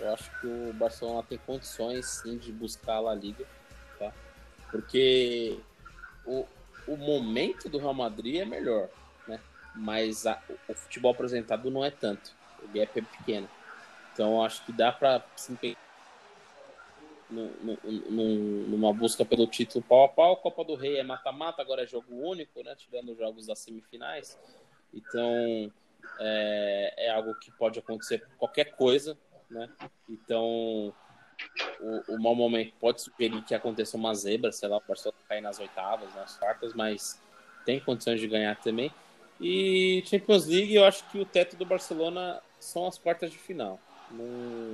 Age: 20-39